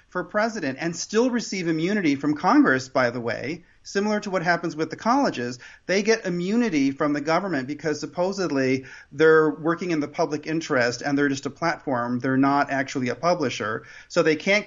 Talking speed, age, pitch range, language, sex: 185 wpm, 40-59, 145-185 Hz, English, male